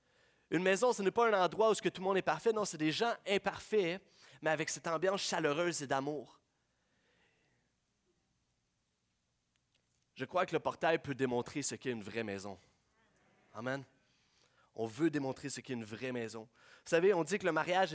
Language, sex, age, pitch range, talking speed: French, male, 30-49, 140-170 Hz, 175 wpm